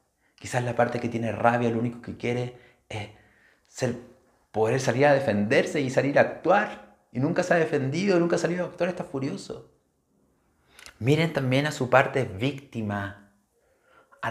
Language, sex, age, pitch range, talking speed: Spanish, male, 30-49, 120-145 Hz, 165 wpm